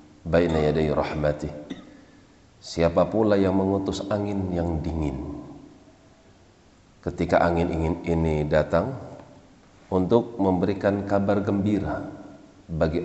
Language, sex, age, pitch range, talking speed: Indonesian, male, 40-59, 75-95 Hz, 90 wpm